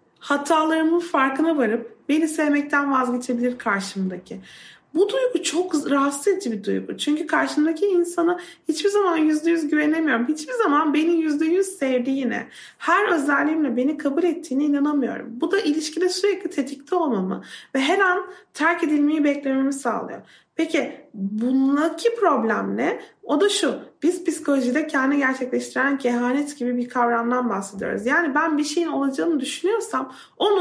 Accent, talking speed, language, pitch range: native, 140 wpm, Turkish, 260-345 Hz